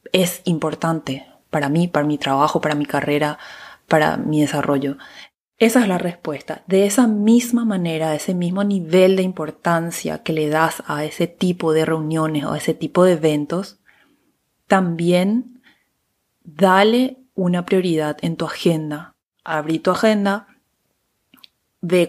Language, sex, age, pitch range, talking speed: Spanish, female, 20-39, 155-200 Hz, 140 wpm